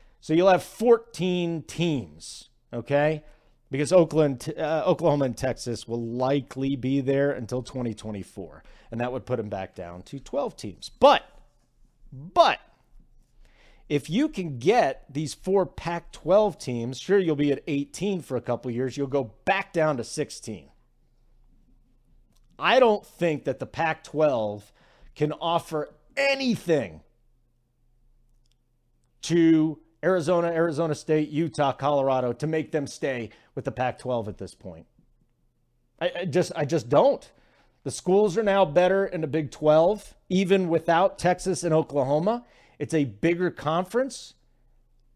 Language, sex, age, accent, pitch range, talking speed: English, male, 40-59, American, 125-180 Hz, 135 wpm